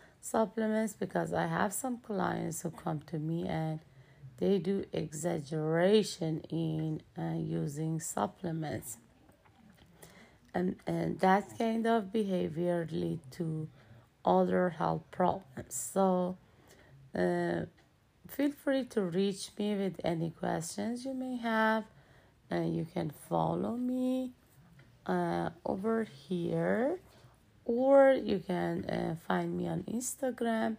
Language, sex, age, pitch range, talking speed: English, female, 30-49, 155-210 Hz, 115 wpm